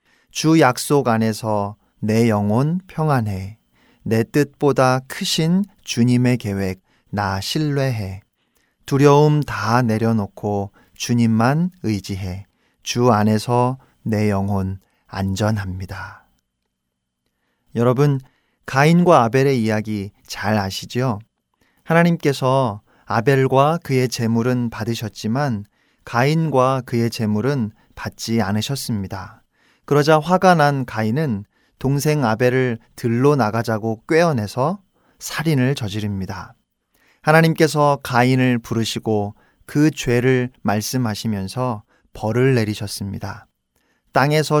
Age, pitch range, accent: 40-59, 105-140 Hz, native